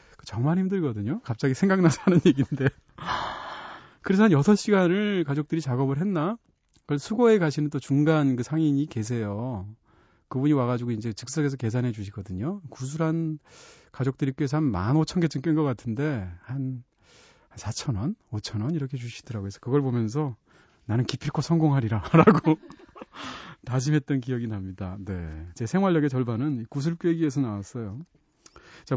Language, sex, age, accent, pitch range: Korean, male, 40-59, native, 120-165 Hz